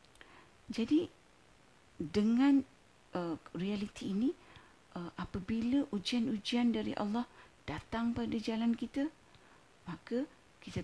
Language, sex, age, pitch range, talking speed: Malay, female, 50-69, 175-235 Hz, 90 wpm